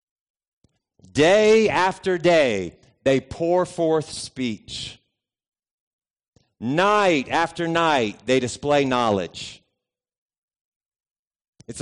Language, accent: English, American